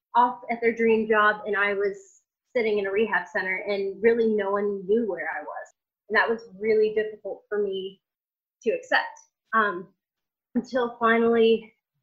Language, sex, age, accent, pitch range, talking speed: English, female, 20-39, American, 200-235 Hz, 165 wpm